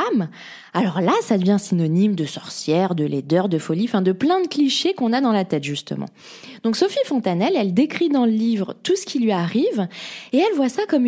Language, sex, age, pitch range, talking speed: French, female, 20-39, 205-275 Hz, 210 wpm